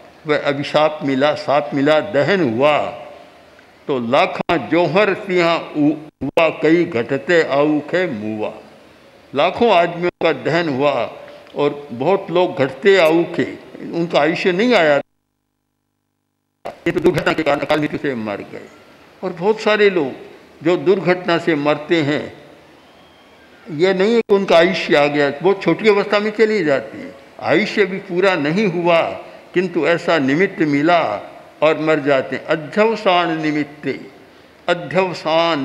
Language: Hindi